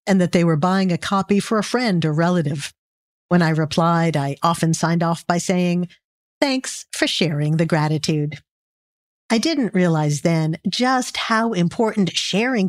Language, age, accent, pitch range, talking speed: English, 50-69, American, 165-225 Hz, 160 wpm